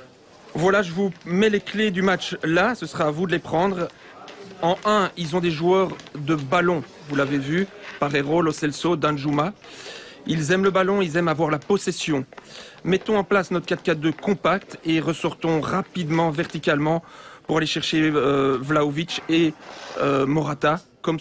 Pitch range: 150-185 Hz